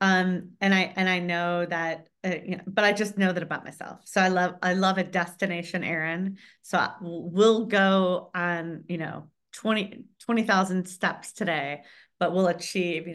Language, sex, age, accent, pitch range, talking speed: English, female, 30-49, American, 170-205 Hz, 190 wpm